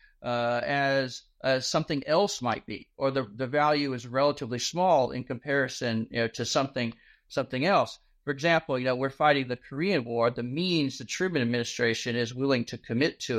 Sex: male